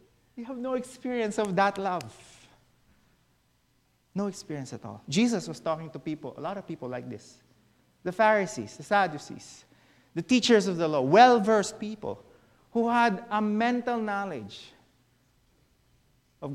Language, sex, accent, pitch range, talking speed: English, male, Filipino, 150-225 Hz, 140 wpm